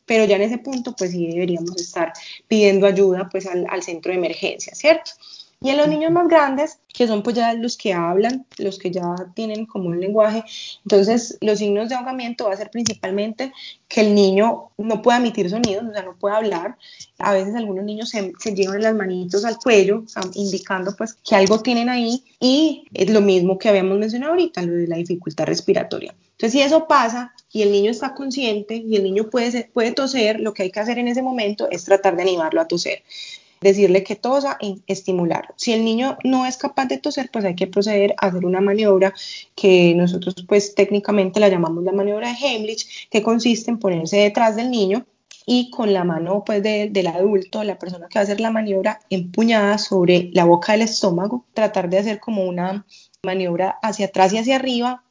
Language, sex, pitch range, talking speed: Spanish, female, 195-235 Hz, 205 wpm